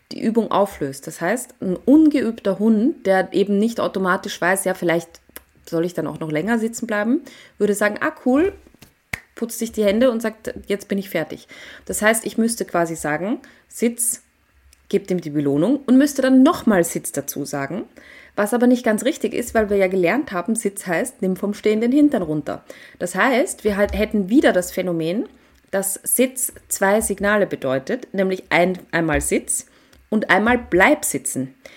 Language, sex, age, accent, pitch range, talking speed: German, female, 30-49, German, 180-235 Hz, 180 wpm